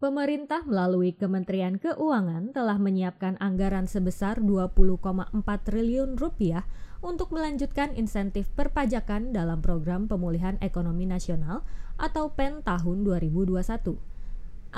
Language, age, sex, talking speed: Indonesian, 20-39, female, 95 wpm